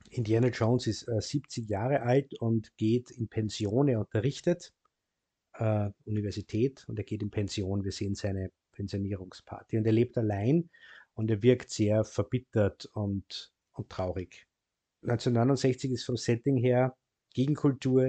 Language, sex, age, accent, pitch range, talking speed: German, male, 50-69, Austrian, 110-135 Hz, 140 wpm